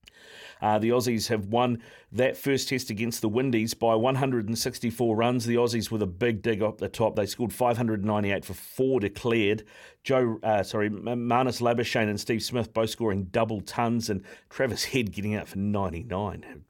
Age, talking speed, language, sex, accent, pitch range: 40-59, 170 wpm, English, male, Australian, 105-125 Hz